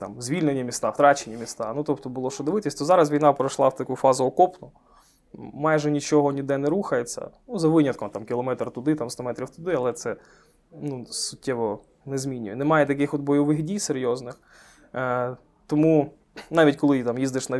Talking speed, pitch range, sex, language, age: 175 wpm, 120-150 Hz, male, Ukrainian, 20-39